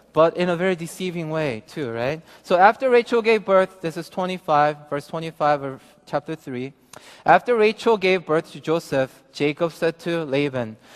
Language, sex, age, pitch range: Korean, male, 20-39, 155-205 Hz